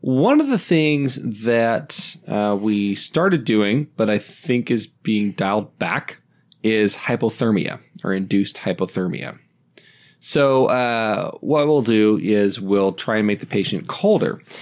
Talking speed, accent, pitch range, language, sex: 140 wpm, American, 100-130 Hz, English, male